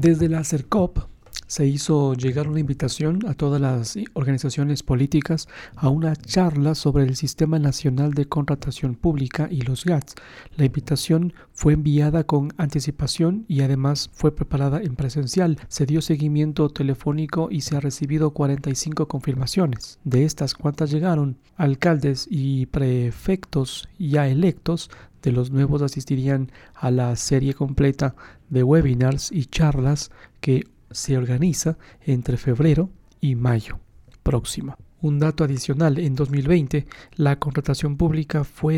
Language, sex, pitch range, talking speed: Spanish, male, 130-155 Hz, 135 wpm